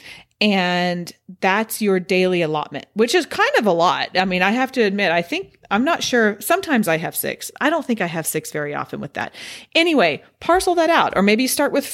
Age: 40-59